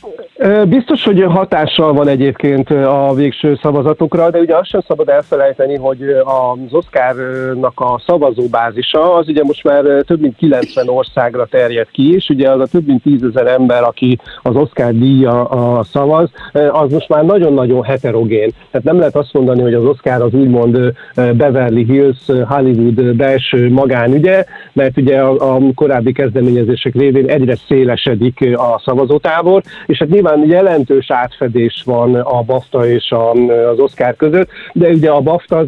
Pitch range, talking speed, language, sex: 125-150 Hz, 150 wpm, Hungarian, male